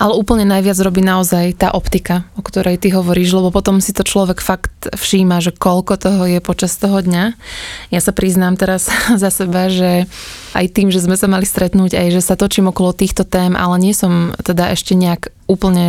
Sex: female